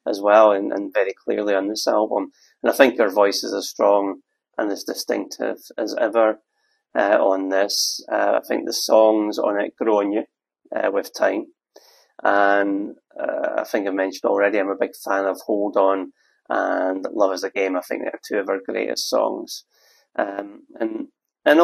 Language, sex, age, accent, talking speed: English, male, 30-49, British, 190 wpm